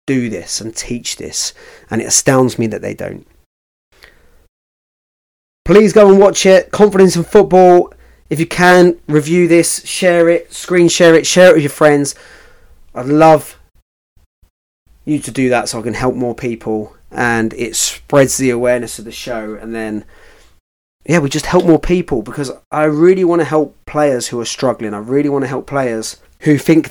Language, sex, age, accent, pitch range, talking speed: English, male, 30-49, British, 105-160 Hz, 180 wpm